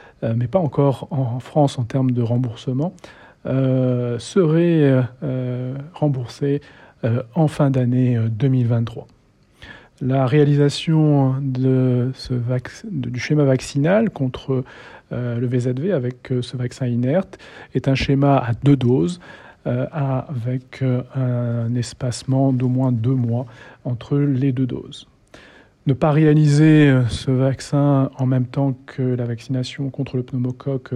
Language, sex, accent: English, male, French